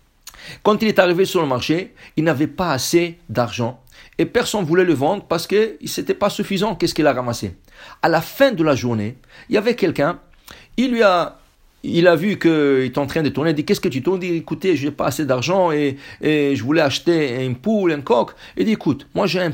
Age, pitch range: 60-79, 150-225 Hz